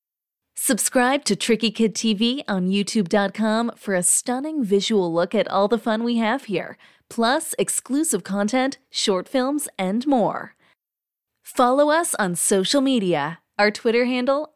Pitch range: 195-250 Hz